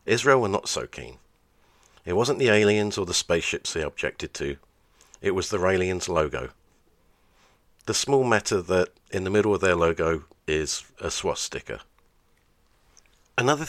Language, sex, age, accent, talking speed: English, male, 50-69, British, 150 wpm